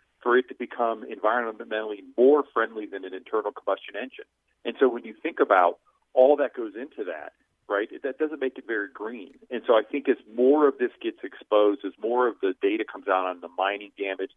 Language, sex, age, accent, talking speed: English, male, 40-59, American, 215 wpm